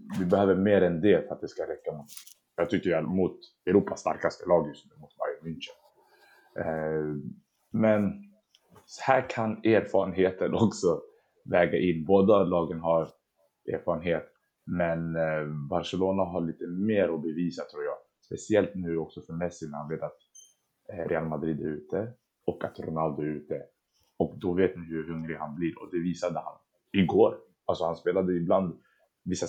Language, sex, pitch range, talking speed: Swedish, male, 80-105 Hz, 160 wpm